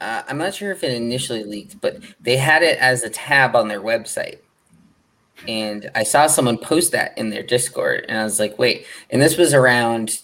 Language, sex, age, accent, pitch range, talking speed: English, male, 20-39, American, 105-125 Hz, 210 wpm